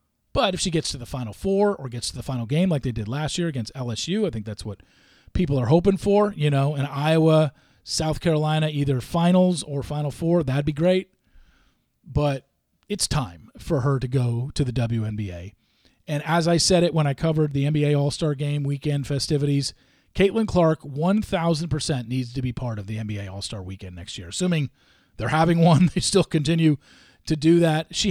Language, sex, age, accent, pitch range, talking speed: English, male, 40-59, American, 120-165 Hz, 195 wpm